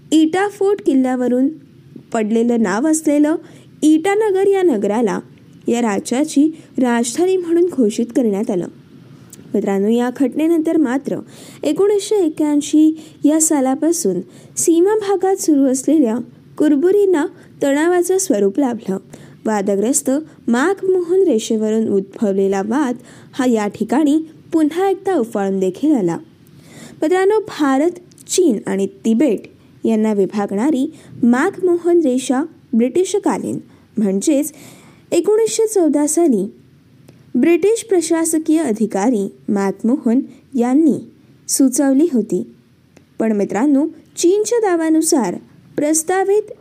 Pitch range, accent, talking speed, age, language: 230-340 Hz, native, 95 wpm, 20-39, Marathi